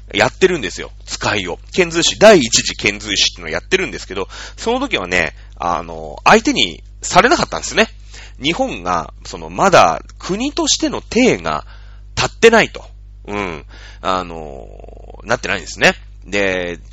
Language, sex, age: Japanese, male, 30-49